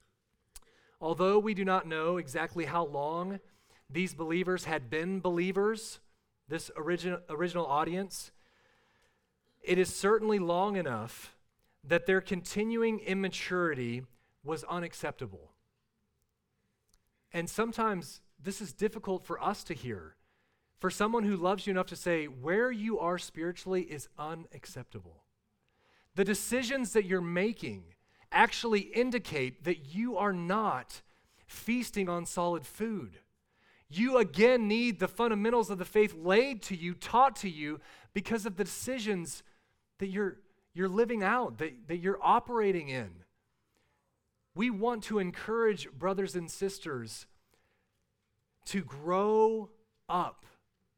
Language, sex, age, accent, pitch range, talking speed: English, male, 40-59, American, 160-210 Hz, 120 wpm